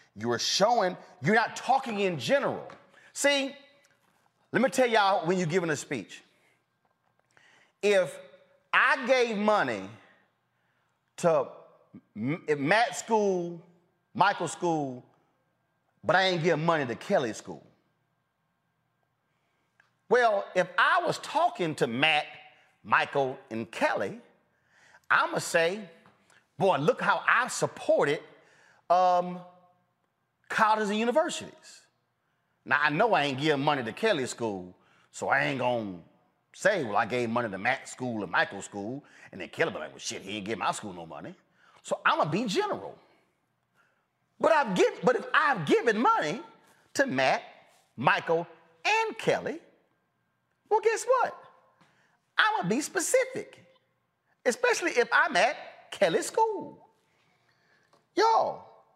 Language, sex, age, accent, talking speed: English, male, 30-49, American, 130 wpm